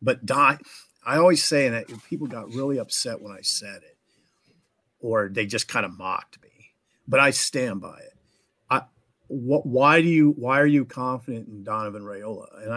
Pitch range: 115-185 Hz